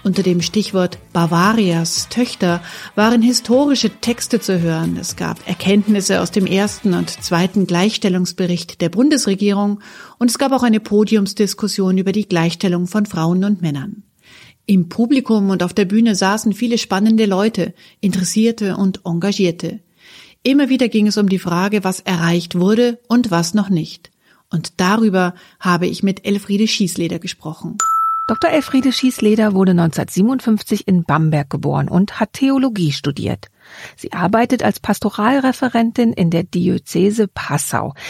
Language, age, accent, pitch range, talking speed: German, 40-59, German, 175-225 Hz, 140 wpm